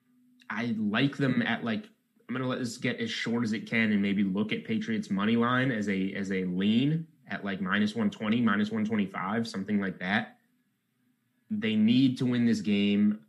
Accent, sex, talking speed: American, male, 190 wpm